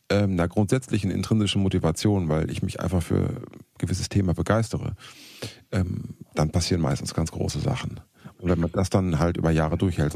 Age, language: 40-59, German